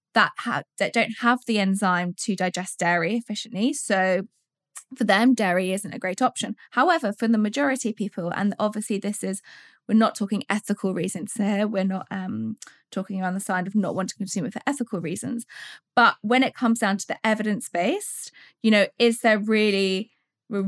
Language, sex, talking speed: English, female, 190 wpm